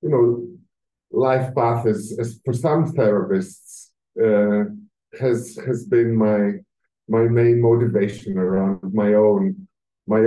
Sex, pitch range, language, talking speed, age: male, 105-120 Hz, English, 115 wpm, 50-69